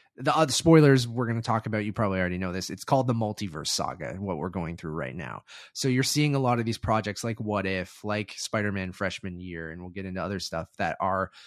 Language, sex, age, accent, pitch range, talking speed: English, male, 30-49, American, 95-115 Hz, 245 wpm